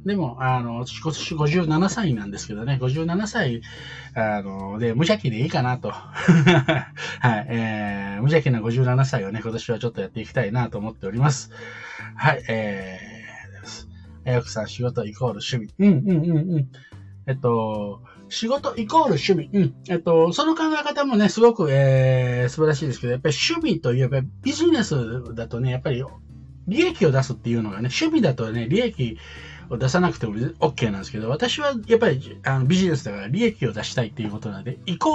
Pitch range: 110-170 Hz